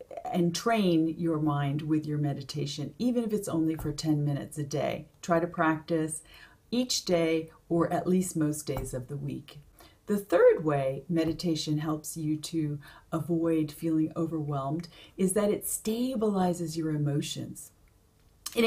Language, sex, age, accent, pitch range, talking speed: English, female, 40-59, American, 155-185 Hz, 150 wpm